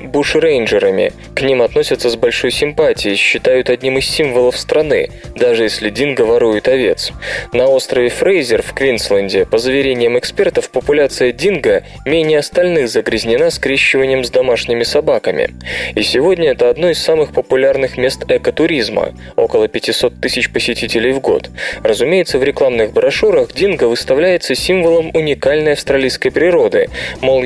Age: 20-39